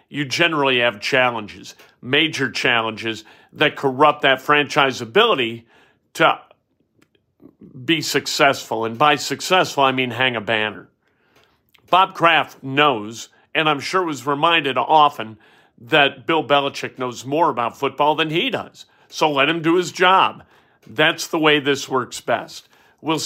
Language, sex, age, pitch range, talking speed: English, male, 50-69, 130-160 Hz, 140 wpm